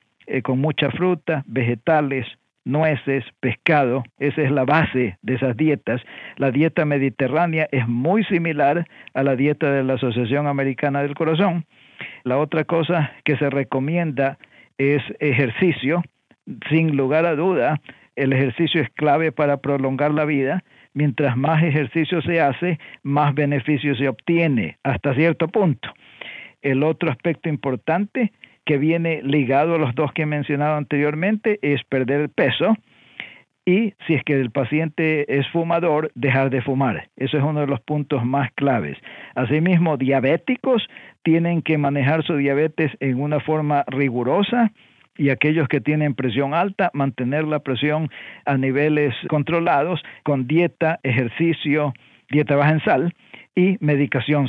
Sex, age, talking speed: male, 50-69, 140 wpm